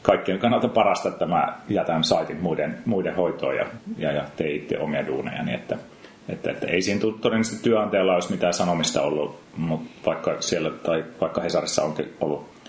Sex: male